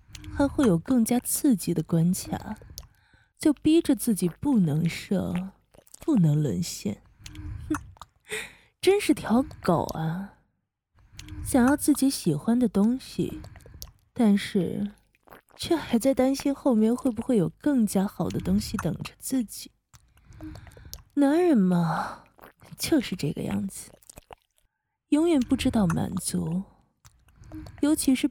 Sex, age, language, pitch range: female, 20-39, Chinese, 175-270 Hz